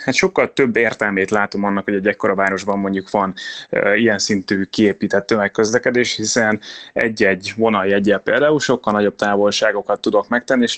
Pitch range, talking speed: 100-120 Hz, 150 wpm